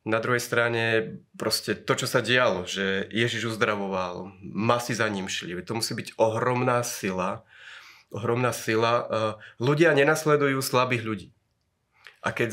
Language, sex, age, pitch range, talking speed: Slovak, male, 30-49, 110-135 Hz, 130 wpm